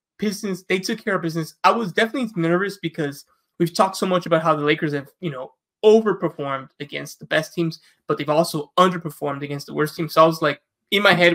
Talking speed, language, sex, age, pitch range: 220 wpm, English, male, 20-39, 155-185 Hz